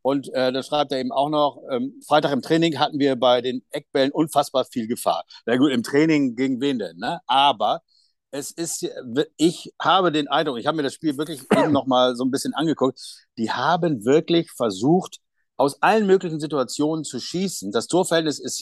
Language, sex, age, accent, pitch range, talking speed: German, male, 50-69, German, 130-170 Hz, 200 wpm